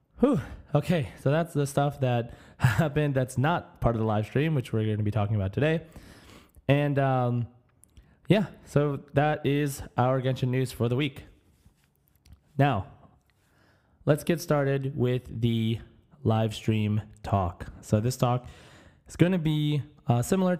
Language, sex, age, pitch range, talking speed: English, male, 20-39, 115-140 Hz, 150 wpm